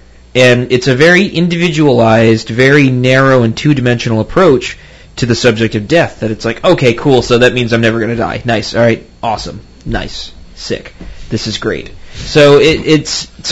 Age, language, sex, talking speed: 20-39, English, male, 180 wpm